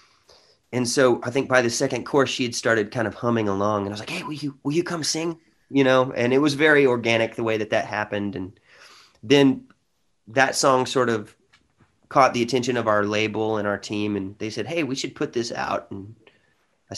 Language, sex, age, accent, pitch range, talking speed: English, male, 30-49, American, 100-130 Hz, 225 wpm